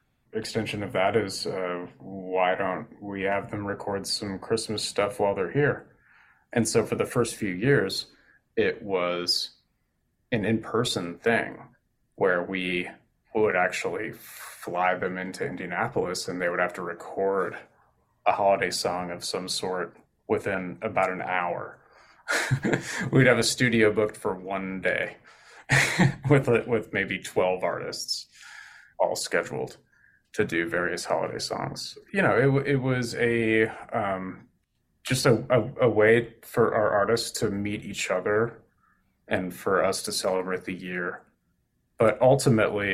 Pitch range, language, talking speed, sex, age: 95-115 Hz, English, 140 wpm, male, 30-49